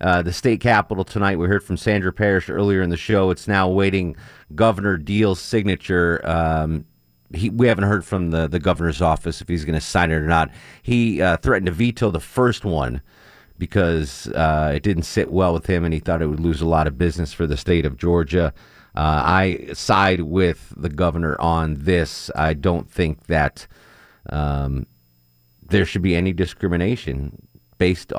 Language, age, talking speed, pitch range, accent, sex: English, 40-59, 185 wpm, 80-105 Hz, American, male